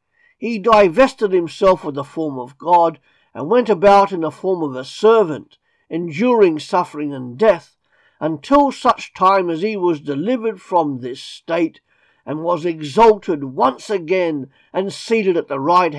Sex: male